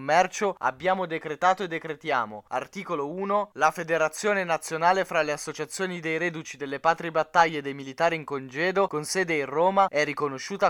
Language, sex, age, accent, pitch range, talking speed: Italian, male, 20-39, native, 145-185 Hz, 155 wpm